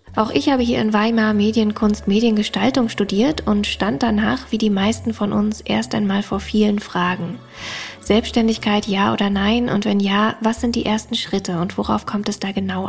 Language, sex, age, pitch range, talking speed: German, female, 20-39, 180-215 Hz, 185 wpm